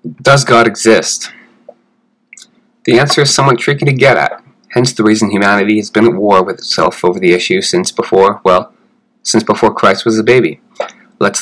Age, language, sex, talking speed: 20-39, English, male, 180 wpm